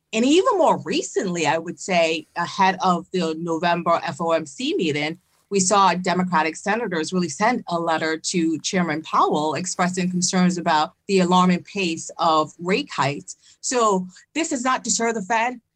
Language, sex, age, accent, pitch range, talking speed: English, female, 40-59, American, 175-210 Hz, 150 wpm